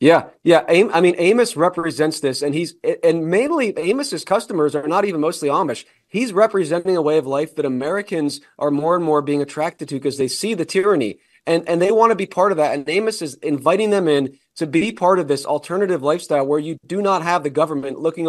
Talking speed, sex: 225 wpm, male